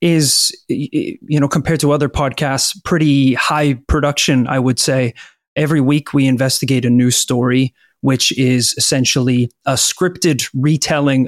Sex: male